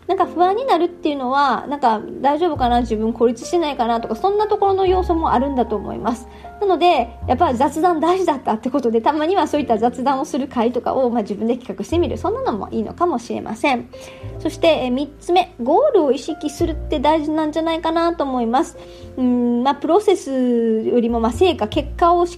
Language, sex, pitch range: Japanese, male, 230-330 Hz